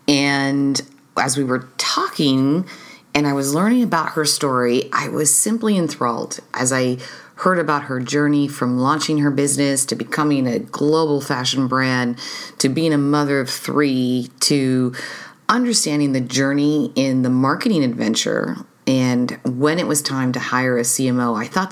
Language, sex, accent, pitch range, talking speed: English, female, American, 130-155 Hz, 155 wpm